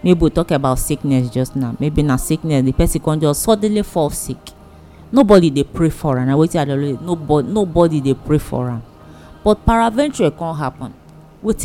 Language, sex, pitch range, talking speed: English, female, 130-175 Hz, 170 wpm